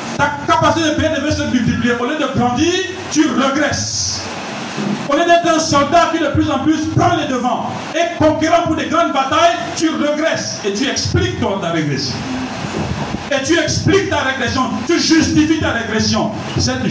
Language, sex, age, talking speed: French, male, 50-69, 175 wpm